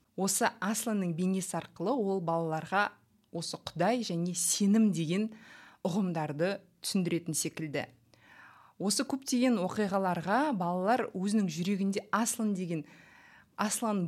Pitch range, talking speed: 165-210 Hz, 80 wpm